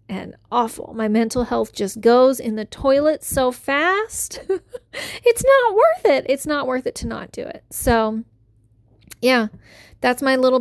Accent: American